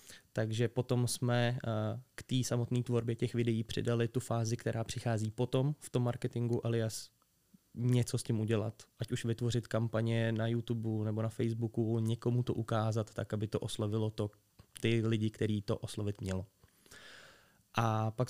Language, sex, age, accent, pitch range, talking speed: Czech, male, 20-39, native, 110-125 Hz, 155 wpm